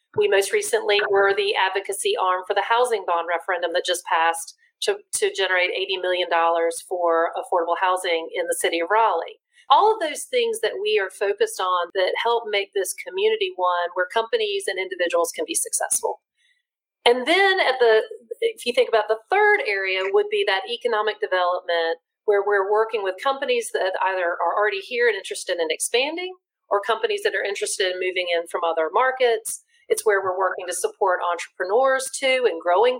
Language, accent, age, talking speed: English, American, 40-59, 185 wpm